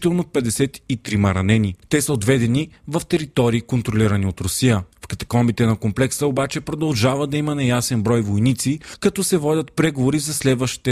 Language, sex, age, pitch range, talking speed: Bulgarian, male, 40-59, 110-145 Hz, 150 wpm